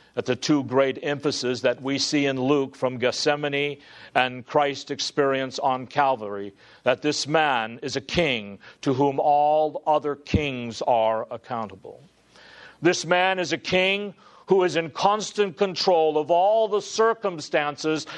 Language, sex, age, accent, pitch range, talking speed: English, male, 50-69, American, 115-150 Hz, 145 wpm